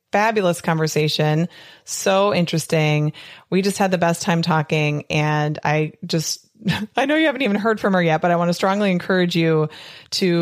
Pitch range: 155-180 Hz